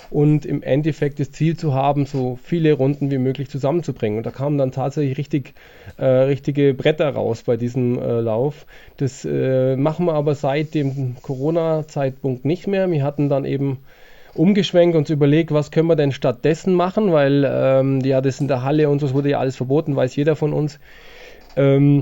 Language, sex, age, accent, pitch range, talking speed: German, male, 20-39, German, 135-160 Hz, 185 wpm